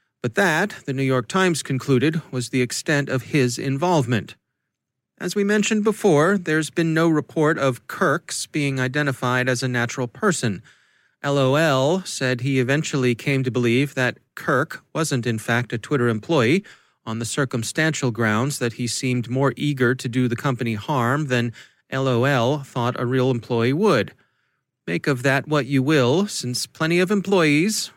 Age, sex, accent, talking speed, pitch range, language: 30-49, male, American, 160 wpm, 120-155 Hz, English